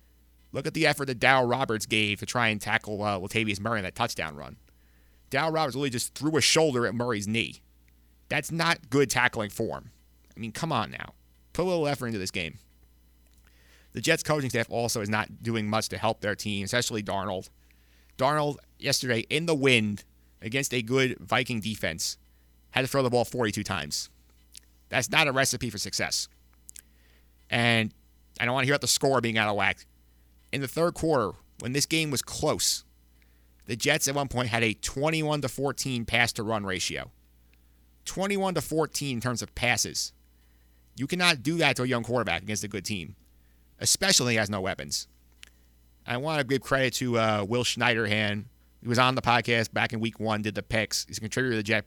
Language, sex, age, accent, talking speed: English, male, 30-49, American, 195 wpm